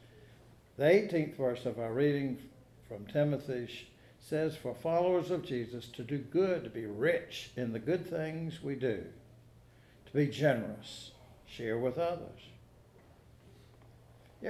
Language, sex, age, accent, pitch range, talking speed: English, male, 60-79, American, 120-155 Hz, 130 wpm